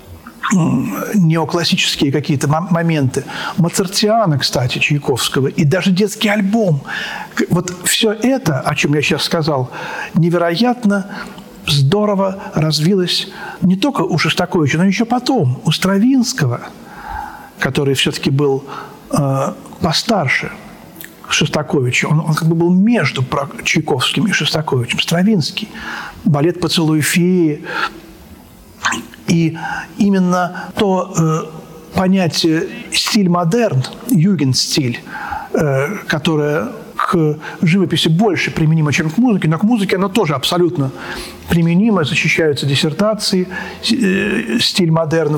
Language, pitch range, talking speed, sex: Russian, 150-200 Hz, 105 wpm, male